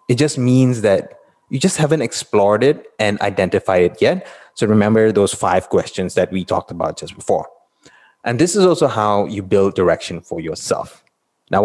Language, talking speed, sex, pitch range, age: English, 180 wpm, male, 105-150 Hz, 20-39